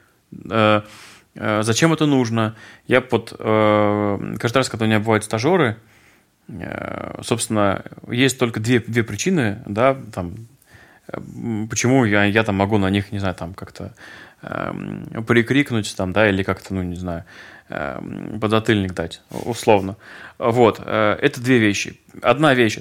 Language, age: Russian, 20-39